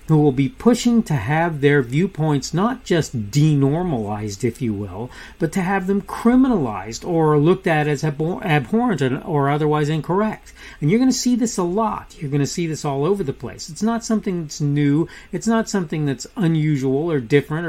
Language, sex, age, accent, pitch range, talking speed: English, male, 40-59, American, 135-190 Hz, 195 wpm